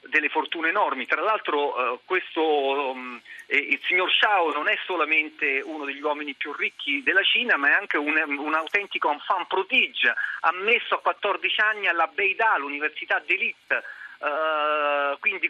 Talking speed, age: 155 wpm, 40-59